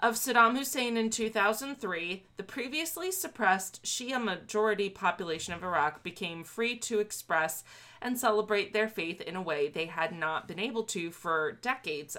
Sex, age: female, 20-39